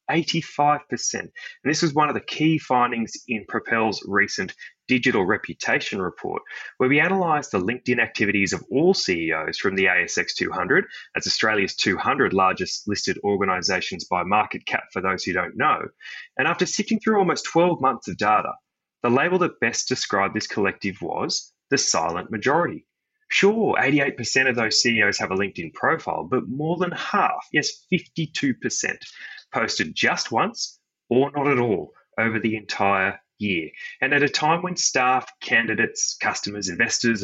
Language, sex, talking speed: English, male, 155 wpm